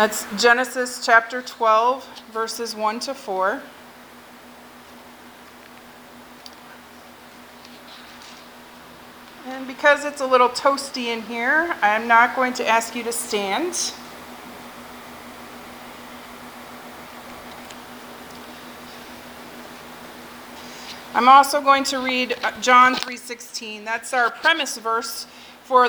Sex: female